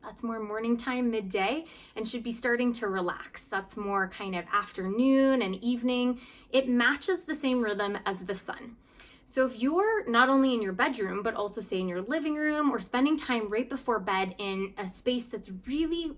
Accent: American